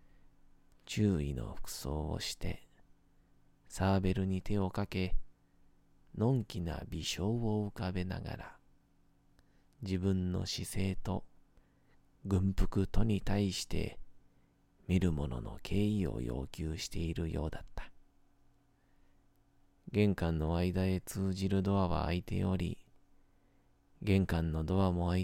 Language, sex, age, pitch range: Japanese, male, 40-59, 85-110 Hz